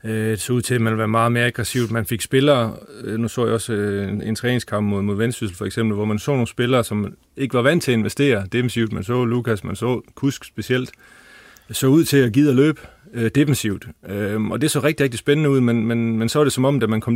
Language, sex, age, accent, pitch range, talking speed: Danish, male, 30-49, native, 110-130 Hz, 250 wpm